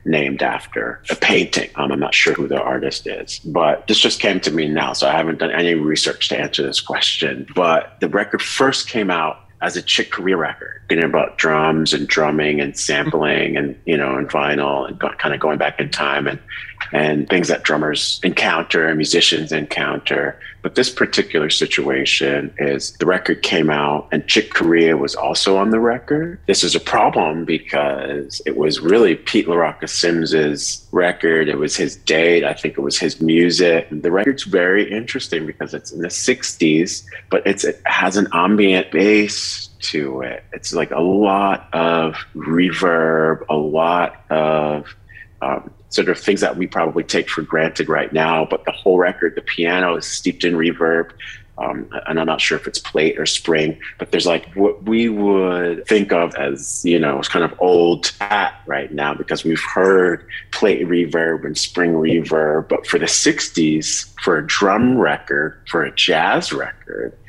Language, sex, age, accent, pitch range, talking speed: English, male, 40-59, American, 75-90 Hz, 185 wpm